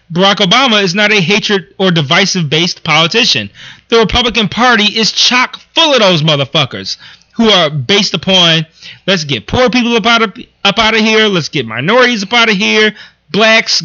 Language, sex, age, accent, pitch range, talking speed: English, male, 30-49, American, 160-215 Hz, 165 wpm